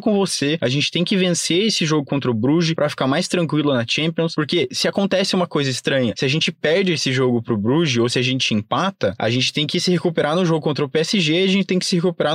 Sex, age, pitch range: male, 20-39, 135-175 Hz